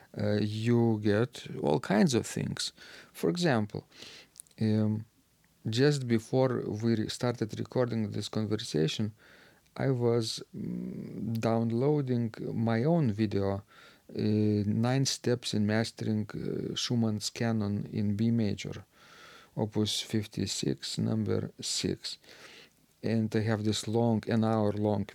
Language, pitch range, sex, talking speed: English, 105-120 Hz, male, 115 wpm